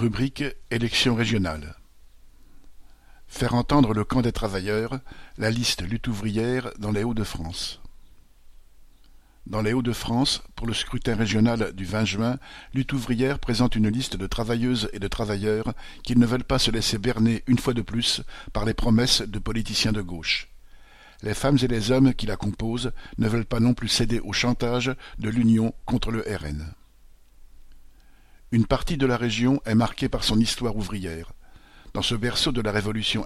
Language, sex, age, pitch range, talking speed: French, male, 50-69, 105-125 Hz, 165 wpm